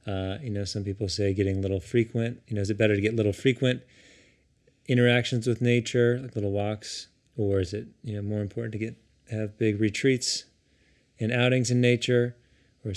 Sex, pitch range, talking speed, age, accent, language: male, 105-125 Hz, 190 wpm, 30-49, American, English